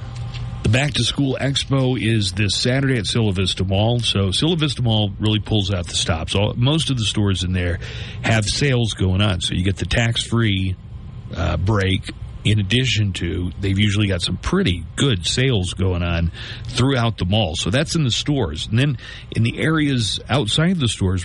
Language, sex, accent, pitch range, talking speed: English, male, American, 95-120 Hz, 185 wpm